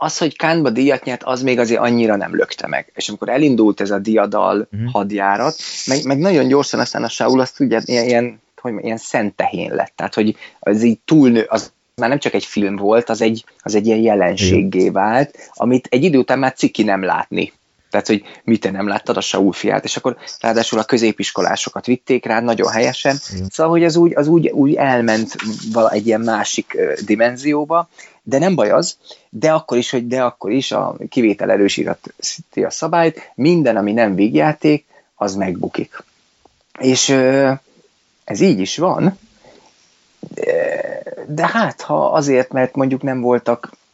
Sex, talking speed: male, 175 wpm